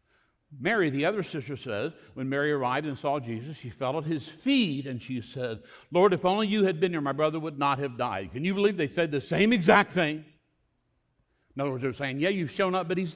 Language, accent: English, American